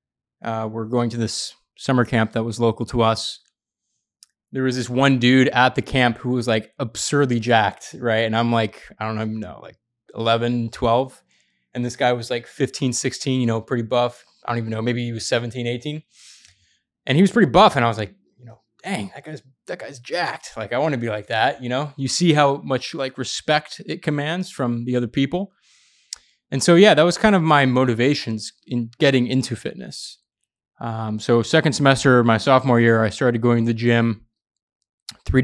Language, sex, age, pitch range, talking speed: English, male, 20-39, 115-135 Hz, 205 wpm